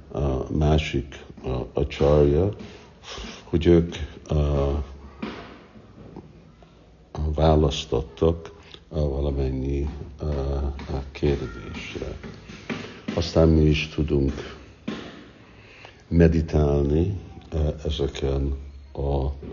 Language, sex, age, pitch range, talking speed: Hungarian, male, 60-79, 70-80 Hz, 65 wpm